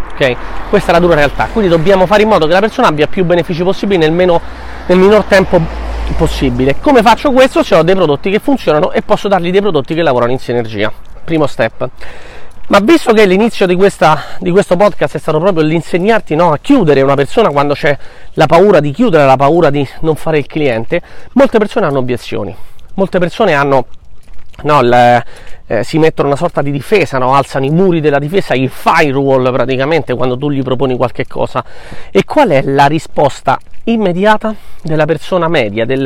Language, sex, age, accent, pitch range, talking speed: Italian, male, 30-49, native, 135-185 Hz, 195 wpm